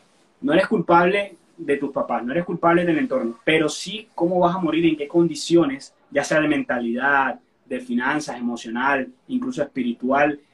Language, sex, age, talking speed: Spanish, male, 30-49, 165 wpm